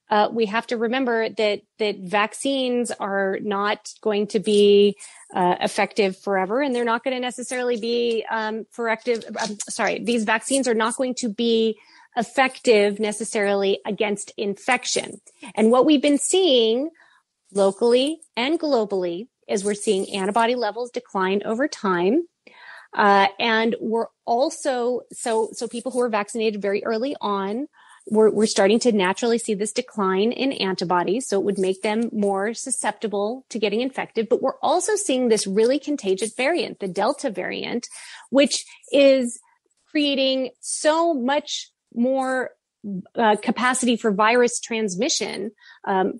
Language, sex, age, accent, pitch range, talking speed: English, female, 30-49, American, 200-245 Hz, 140 wpm